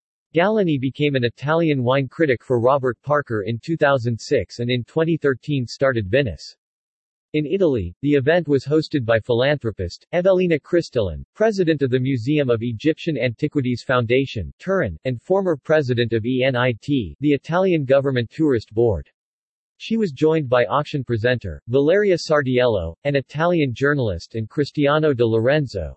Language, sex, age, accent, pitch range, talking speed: English, male, 40-59, American, 120-150 Hz, 140 wpm